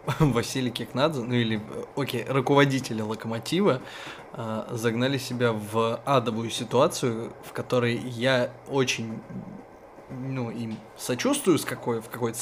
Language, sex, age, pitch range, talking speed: Russian, male, 20-39, 115-135 Hz, 110 wpm